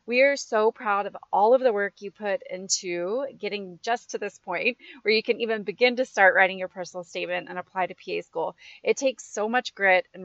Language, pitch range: English, 200-245 Hz